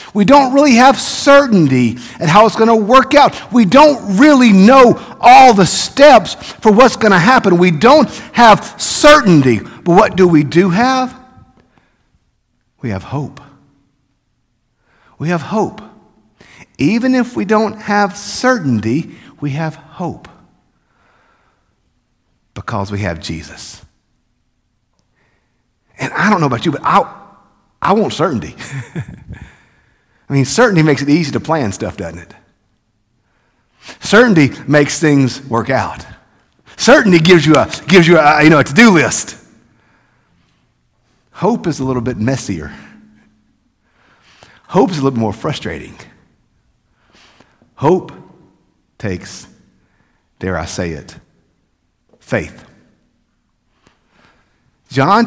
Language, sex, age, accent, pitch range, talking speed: English, male, 50-69, American, 130-215 Hz, 120 wpm